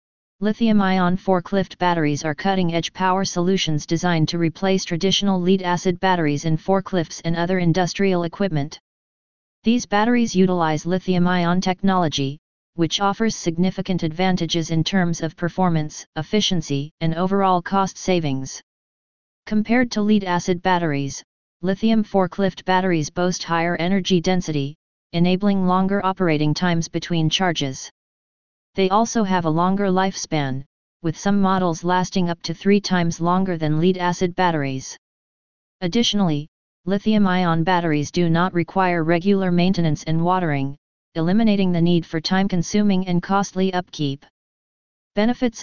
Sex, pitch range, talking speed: female, 165-195 Hz, 120 wpm